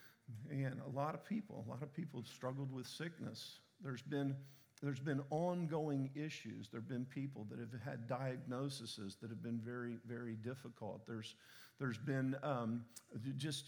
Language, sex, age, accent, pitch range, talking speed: English, male, 50-69, American, 125-165 Hz, 165 wpm